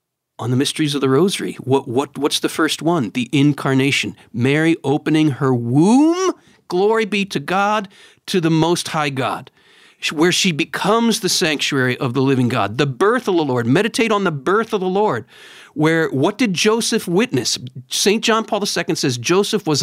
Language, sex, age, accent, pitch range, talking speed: English, male, 50-69, American, 145-210 Hz, 180 wpm